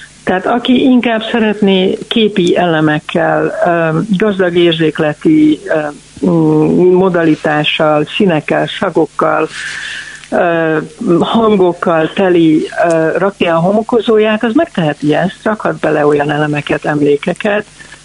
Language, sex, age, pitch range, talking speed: Hungarian, female, 60-79, 155-205 Hz, 85 wpm